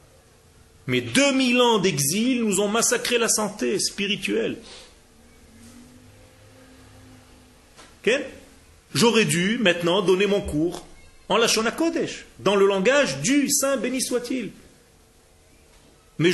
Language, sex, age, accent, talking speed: French, male, 40-59, French, 105 wpm